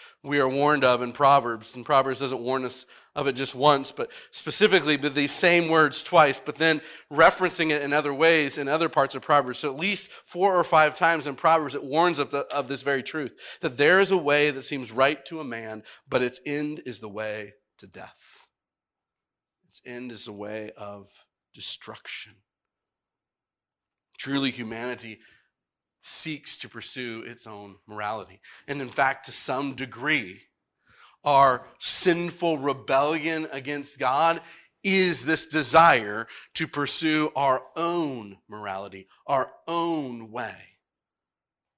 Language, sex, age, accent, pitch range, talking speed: English, male, 40-59, American, 115-155 Hz, 150 wpm